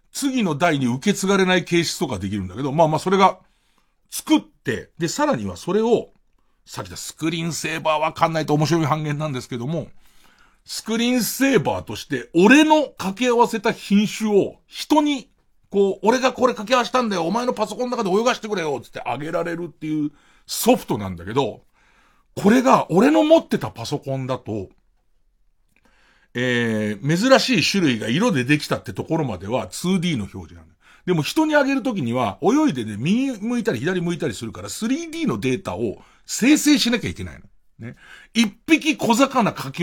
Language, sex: Japanese, male